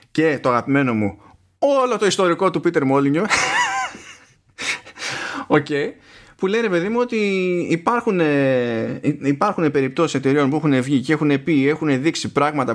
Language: Greek